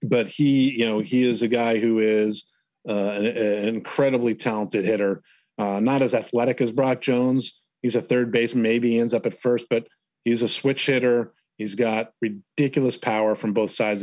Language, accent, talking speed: English, American, 195 wpm